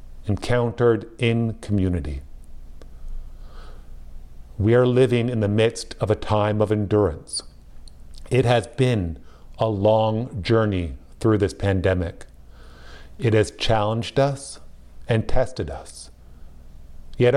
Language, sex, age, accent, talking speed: English, male, 50-69, American, 105 wpm